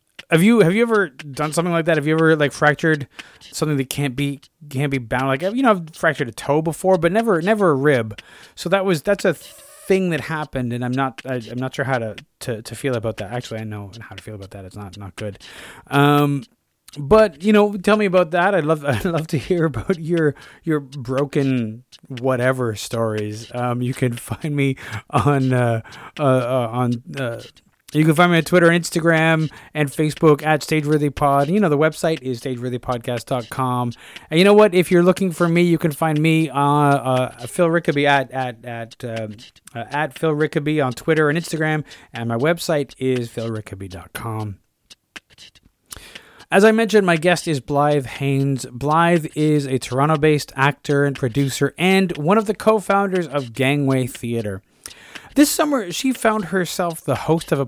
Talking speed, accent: 190 wpm, American